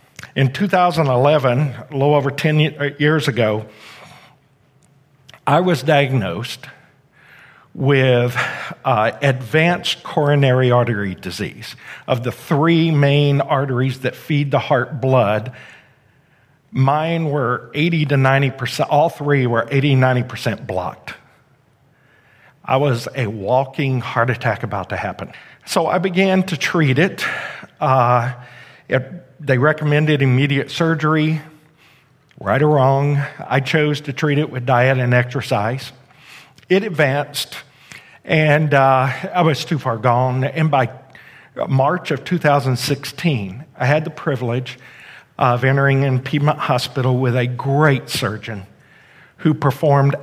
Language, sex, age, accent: English, male, 50-69, American